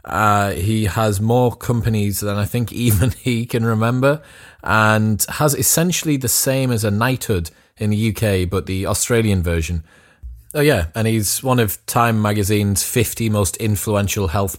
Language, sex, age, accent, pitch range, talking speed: English, male, 20-39, British, 95-115 Hz, 160 wpm